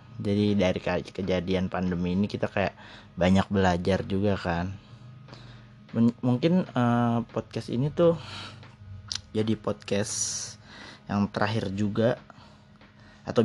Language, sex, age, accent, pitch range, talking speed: Indonesian, male, 20-39, native, 105-120 Hz, 105 wpm